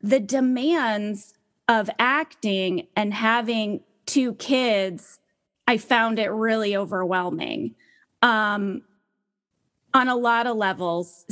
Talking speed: 100 wpm